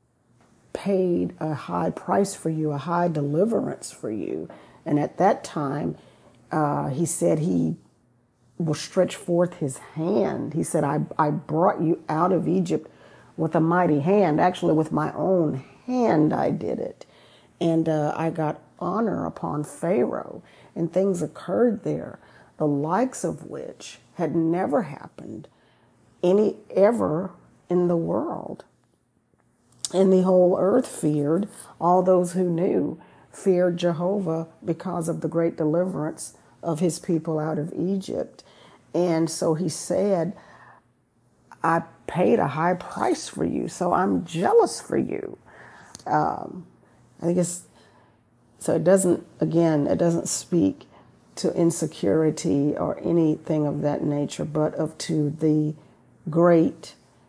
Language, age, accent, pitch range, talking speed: English, 40-59, American, 150-180 Hz, 135 wpm